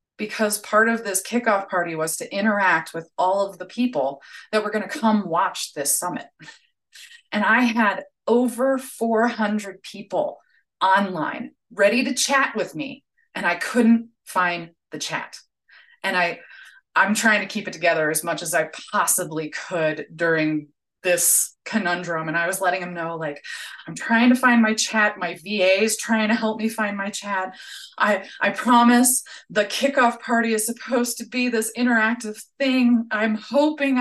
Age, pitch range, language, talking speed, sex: 30-49, 185-245 Hz, English, 170 wpm, female